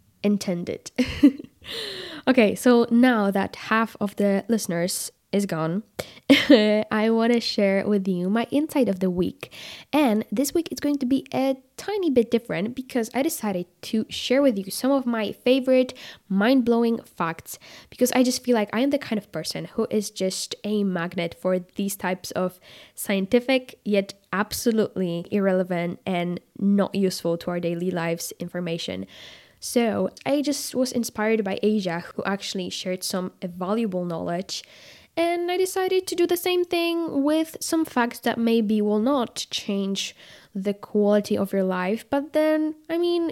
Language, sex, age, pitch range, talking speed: English, female, 10-29, 190-255 Hz, 160 wpm